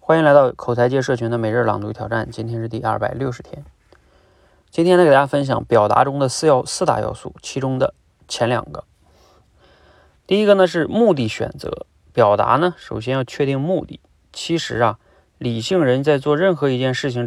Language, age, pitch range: Chinese, 20-39, 120-155 Hz